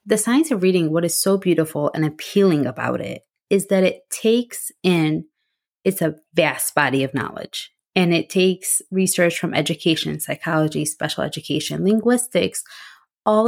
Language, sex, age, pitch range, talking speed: English, female, 20-39, 155-195 Hz, 150 wpm